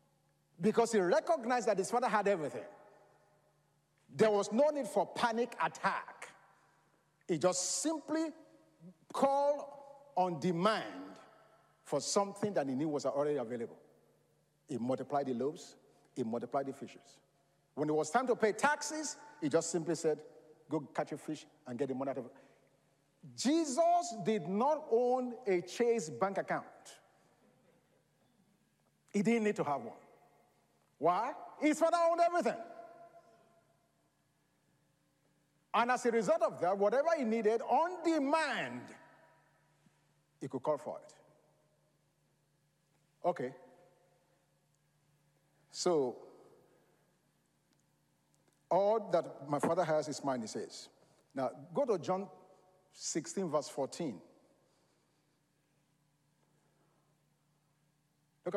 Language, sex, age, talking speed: English, male, 50-69, 115 wpm